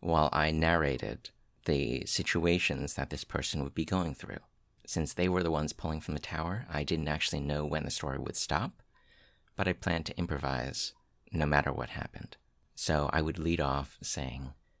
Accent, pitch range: American, 70-95 Hz